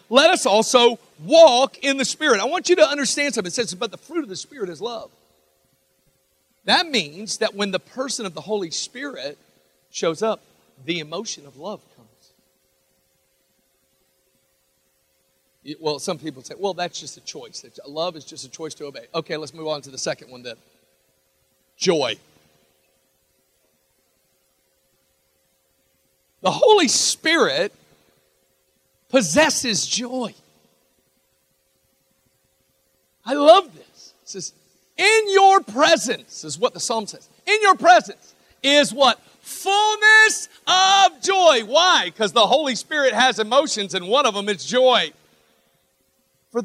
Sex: male